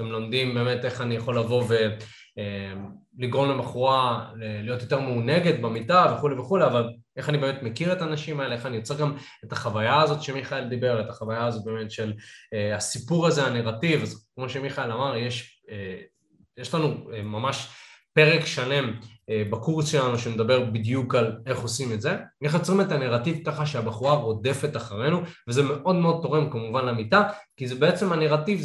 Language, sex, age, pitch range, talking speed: Hebrew, male, 20-39, 120-150 Hz, 160 wpm